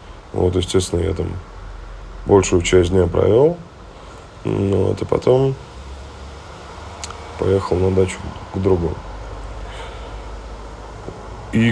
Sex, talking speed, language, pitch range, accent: male, 90 wpm, Russian, 90-105 Hz, native